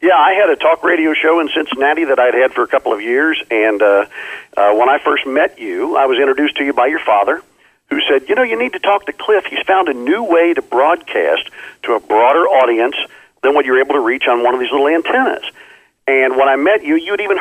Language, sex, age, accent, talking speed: English, male, 50-69, American, 250 wpm